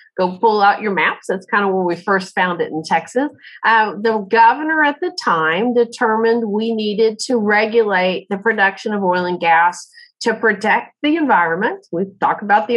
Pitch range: 190-235 Hz